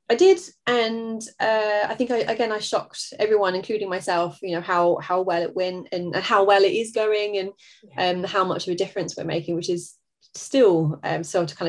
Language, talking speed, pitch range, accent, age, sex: English, 220 wpm, 170-215 Hz, British, 20-39, female